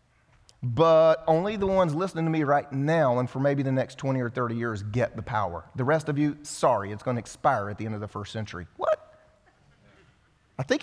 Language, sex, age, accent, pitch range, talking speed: English, male, 30-49, American, 135-180 Hz, 220 wpm